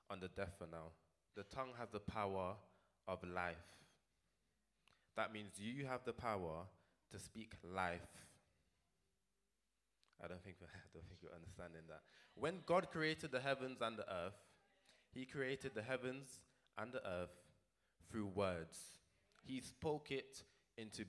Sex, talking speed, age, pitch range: male, 145 wpm, 20-39, 95-125 Hz